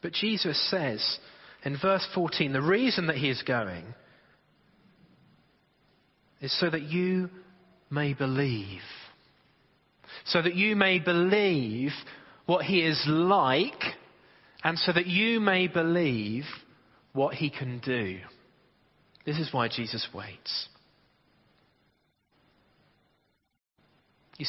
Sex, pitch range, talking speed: male, 130-180 Hz, 105 wpm